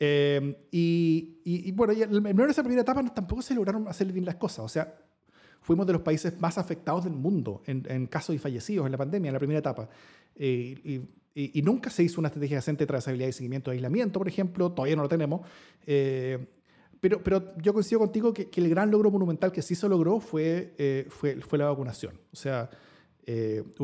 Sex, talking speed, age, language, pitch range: male, 215 wpm, 30-49, Spanish, 135-185 Hz